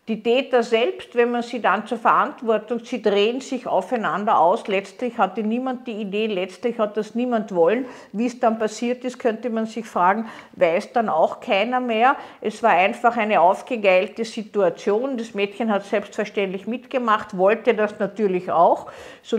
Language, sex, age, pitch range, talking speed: German, female, 50-69, 195-240 Hz, 165 wpm